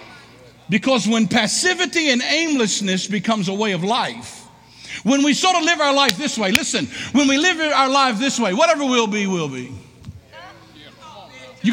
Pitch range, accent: 195-260 Hz, American